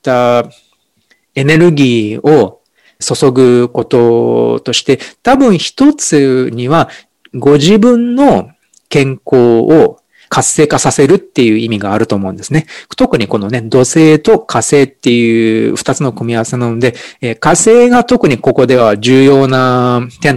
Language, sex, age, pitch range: Japanese, male, 40-59, 120-175 Hz